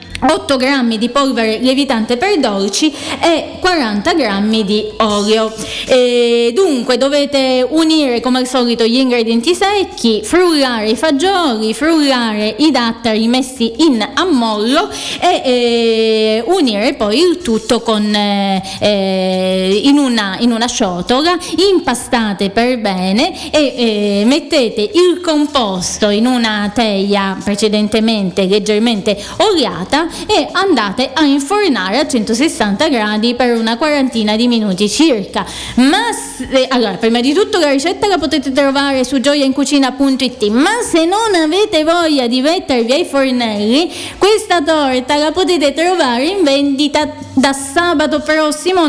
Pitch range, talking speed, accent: 225-315 Hz, 125 wpm, native